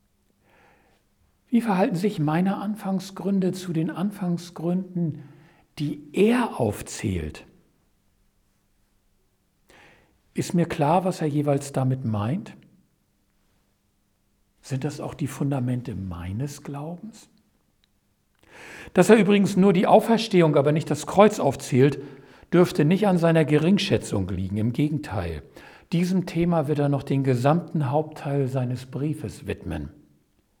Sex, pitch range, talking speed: male, 125-190 Hz, 110 wpm